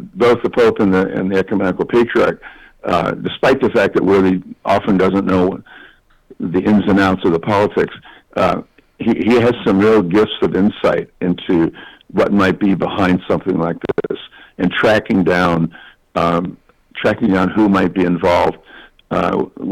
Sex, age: male, 60-79